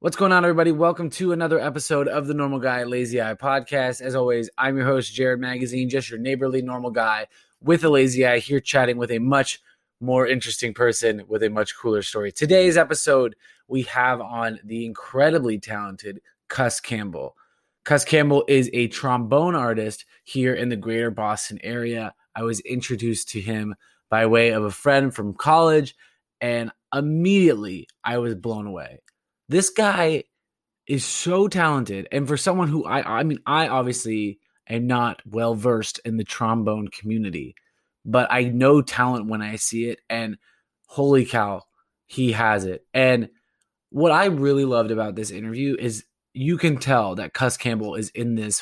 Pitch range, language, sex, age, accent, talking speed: 110-140 Hz, English, male, 20-39, American, 170 wpm